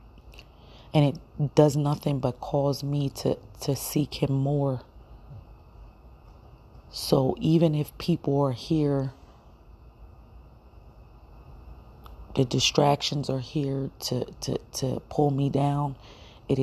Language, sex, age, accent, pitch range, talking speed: English, female, 30-49, American, 125-145 Hz, 105 wpm